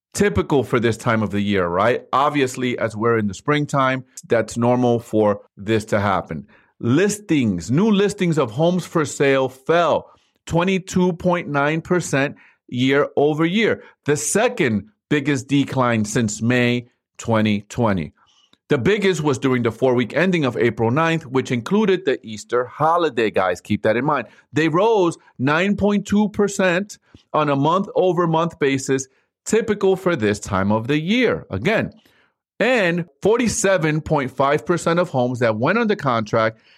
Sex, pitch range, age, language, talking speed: male, 125-170 Hz, 40-59, English, 135 wpm